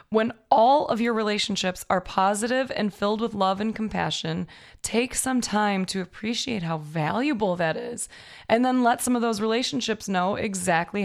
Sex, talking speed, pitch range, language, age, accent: female, 170 wpm, 180-230 Hz, English, 20-39, American